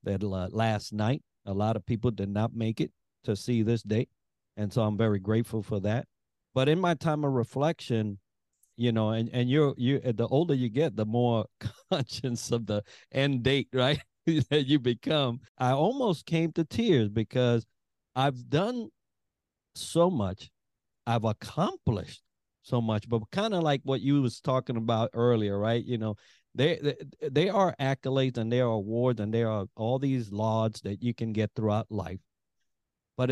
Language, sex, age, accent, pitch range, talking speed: English, male, 50-69, American, 110-140 Hz, 175 wpm